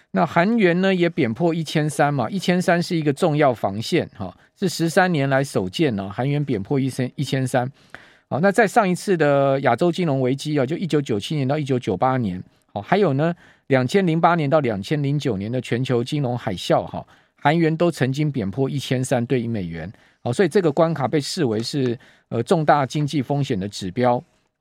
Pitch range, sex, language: 125-170 Hz, male, Chinese